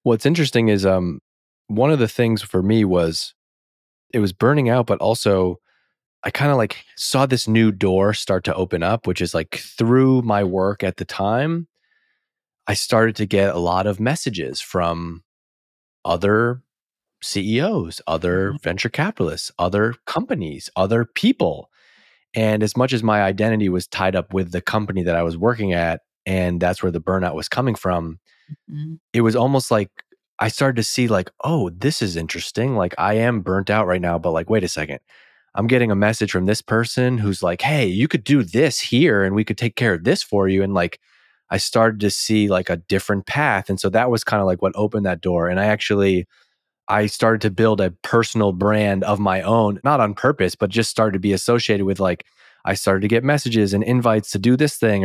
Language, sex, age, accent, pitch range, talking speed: English, male, 30-49, American, 95-115 Hz, 205 wpm